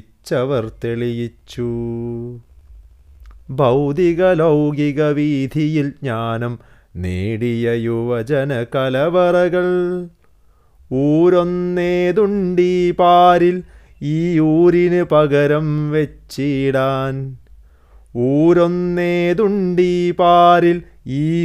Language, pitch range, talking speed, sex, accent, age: Malayalam, 120-165 Hz, 40 wpm, male, native, 30-49